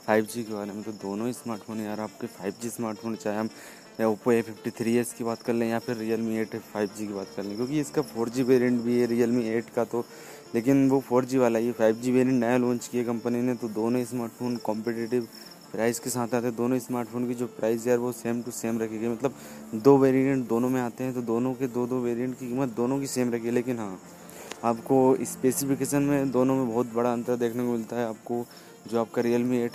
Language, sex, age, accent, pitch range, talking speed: Hindi, male, 20-39, native, 115-125 Hz, 225 wpm